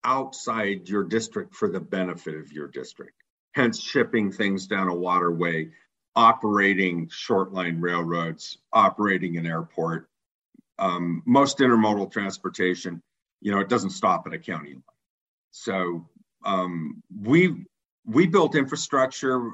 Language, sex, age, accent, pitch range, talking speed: English, male, 50-69, American, 85-105 Hz, 125 wpm